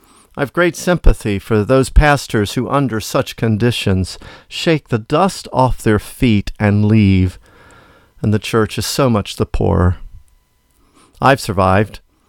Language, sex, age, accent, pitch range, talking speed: English, male, 50-69, American, 105-140 Hz, 135 wpm